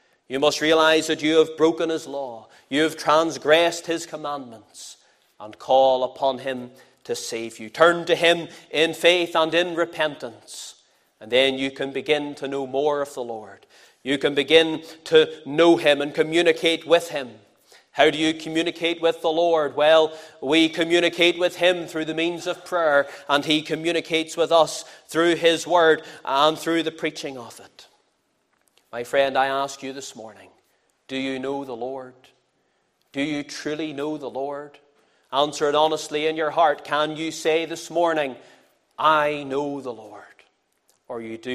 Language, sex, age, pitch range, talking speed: English, male, 30-49, 135-165 Hz, 170 wpm